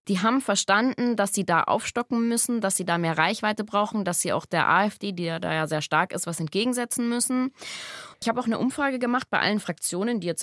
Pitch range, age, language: 175-230 Hz, 20-39, German